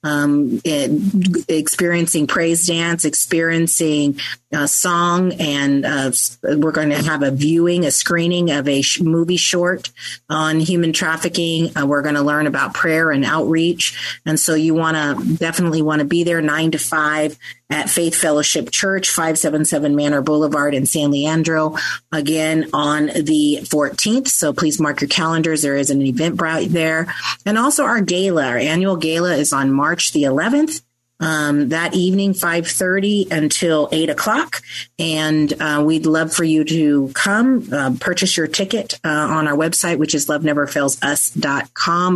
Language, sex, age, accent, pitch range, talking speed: English, female, 40-59, American, 150-170 Hz, 155 wpm